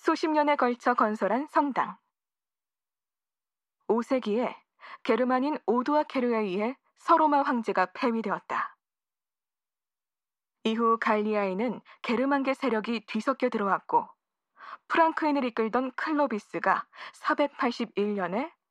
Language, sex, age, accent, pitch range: Korean, female, 20-39, native, 215-280 Hz